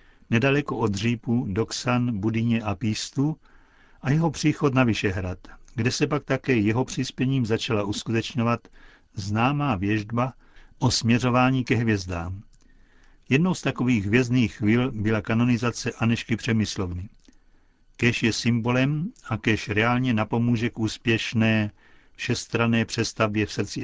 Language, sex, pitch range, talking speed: Czech, male, 105-125 Hz, 120 wpm